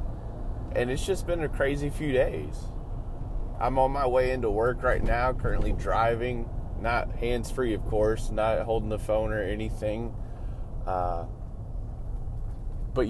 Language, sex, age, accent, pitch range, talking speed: English, male, 30-49, American, 100-120 Hz, 140 wpm